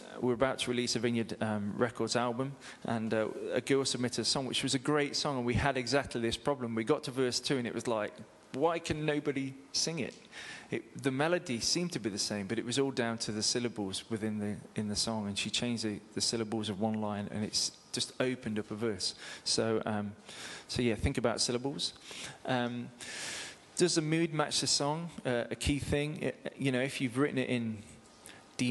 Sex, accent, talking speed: male, British, 220 wpm